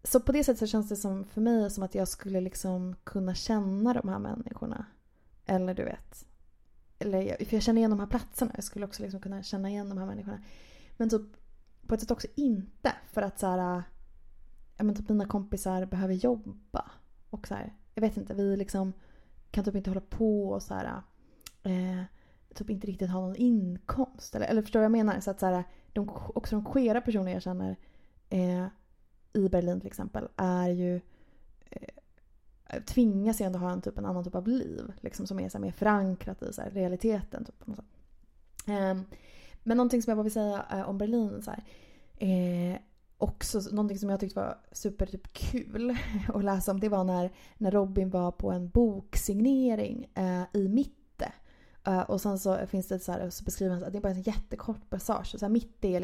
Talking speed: 205 wpm